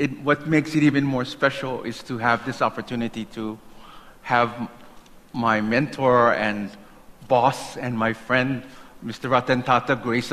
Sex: male